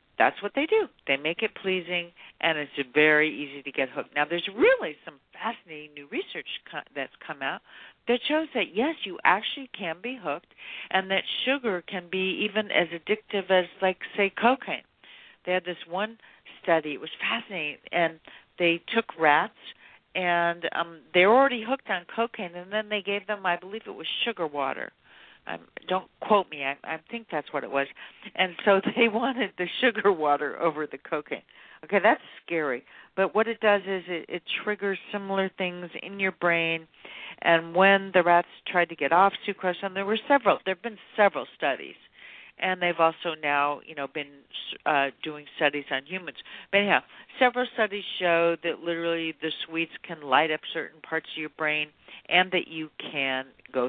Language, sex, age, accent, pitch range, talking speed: English, female, 50-69, American, 160-210 Hz, 185 wpm